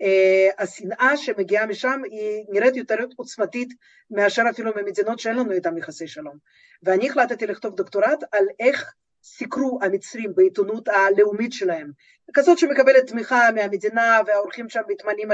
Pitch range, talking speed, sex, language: 200-255 Hz, 135 wpm, female, Hebrew